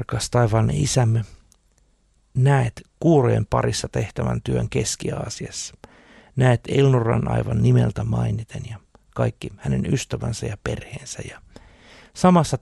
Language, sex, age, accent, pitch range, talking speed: Finnish, male, 60-79, native, 105-125 Hz, 100 wpm